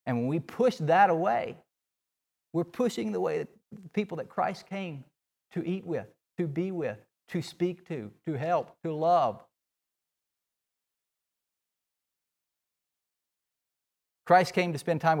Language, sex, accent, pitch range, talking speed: English, male, American, 110-160 Hz, 130 wpm